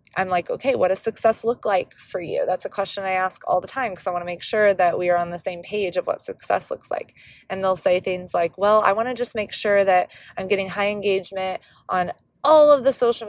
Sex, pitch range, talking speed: female, 180-220 Hz, 260 wpm